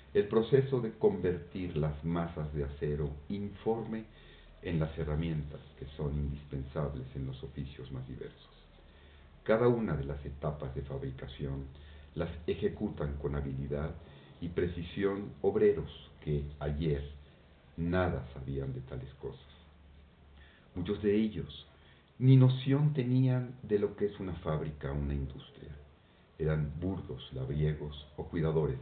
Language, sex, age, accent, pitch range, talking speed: Spanish, male, 50-69, Mexican, 70-100 Hz, 125 wpm